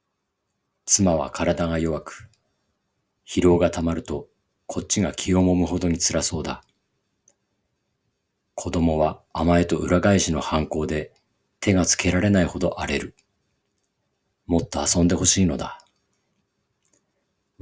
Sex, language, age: male, Japanese, 40-59